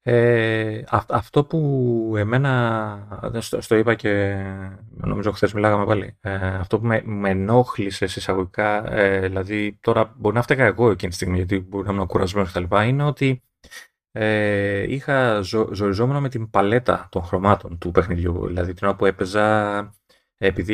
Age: 30-49